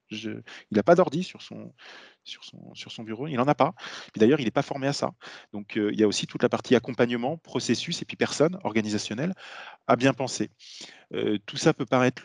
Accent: French